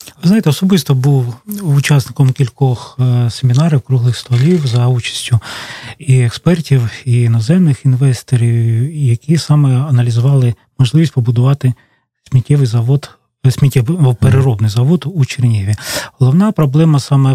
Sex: male